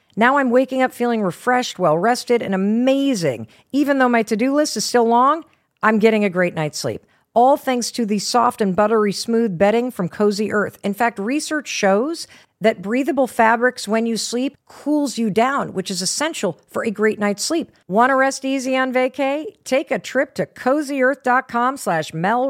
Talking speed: 185 wpm